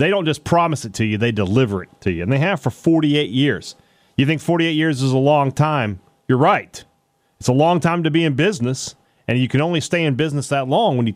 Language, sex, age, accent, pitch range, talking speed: English, male, 40-59, American, 110-140 Hz, 255 wpm